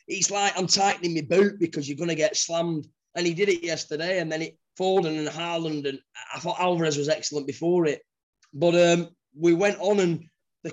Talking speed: 205 wpm